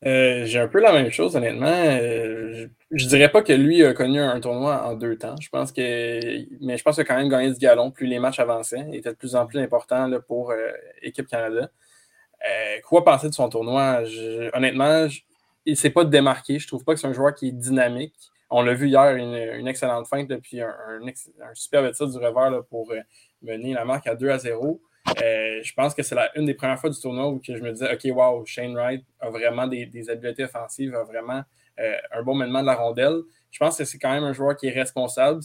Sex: male